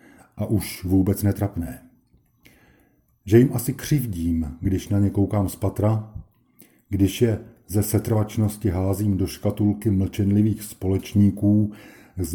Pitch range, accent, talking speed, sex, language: 95-115 Hz, native, 115 wpm, male, Czech